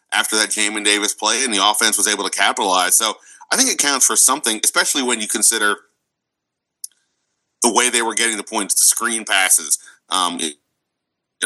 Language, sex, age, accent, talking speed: English, male, 30-49, American, 185 wpm